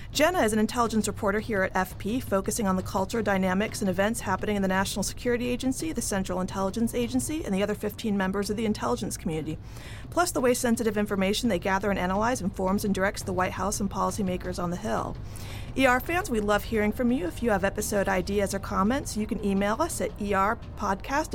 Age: 40-59